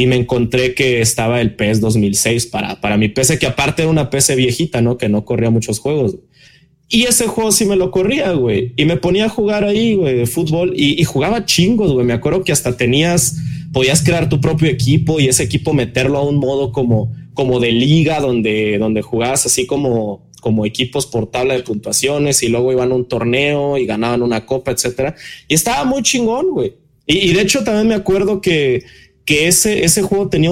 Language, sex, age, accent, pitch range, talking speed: Spanish, male, 20-39, Mexican, 120-160 Hz, 210 wpm